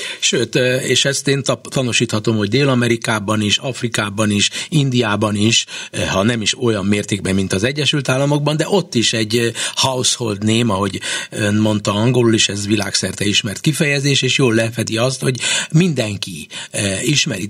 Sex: male